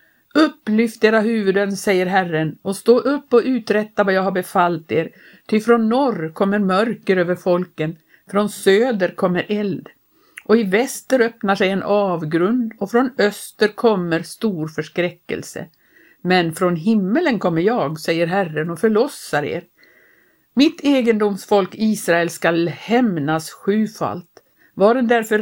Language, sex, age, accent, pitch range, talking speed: Swedish, female, 60-79, native, 175-225 Hz, 135 wpm